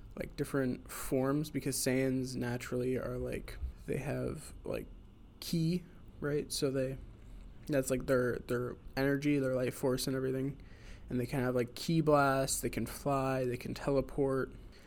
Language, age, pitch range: English, 20-39, 120-140 Hz